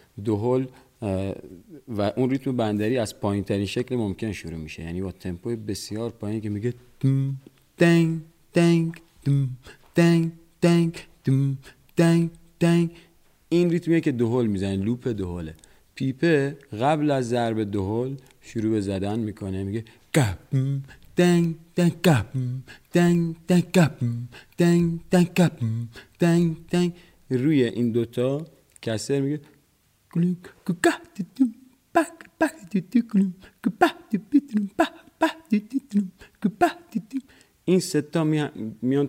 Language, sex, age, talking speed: Persian, male, 40-59, 70 wpm